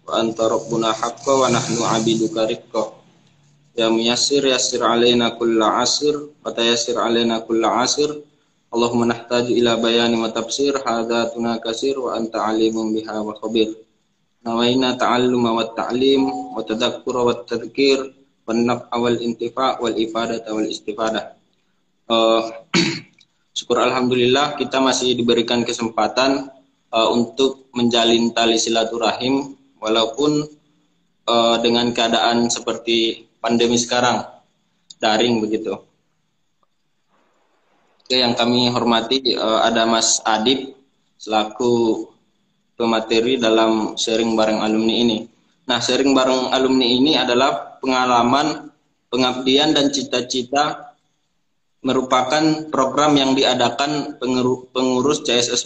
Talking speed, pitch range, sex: 105 wpm, 115-130 Hz, male